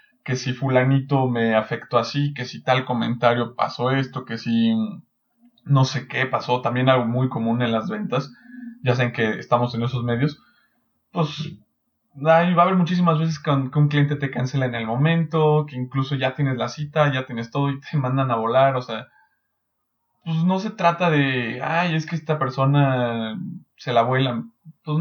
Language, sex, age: English, male, 20-39